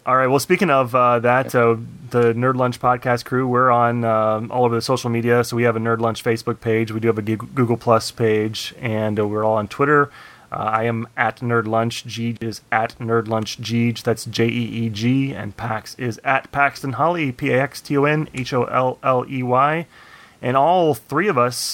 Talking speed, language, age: 190 wpm, English, 30-49